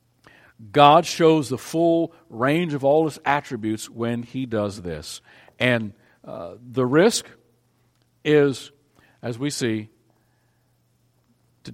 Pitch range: 105-140 Hz